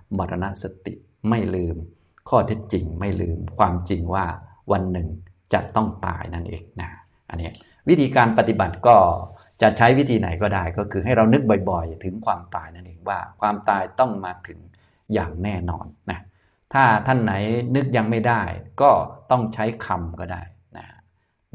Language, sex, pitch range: Thai, male, 90-110 Hz